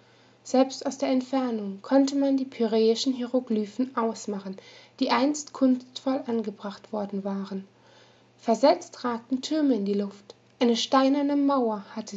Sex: female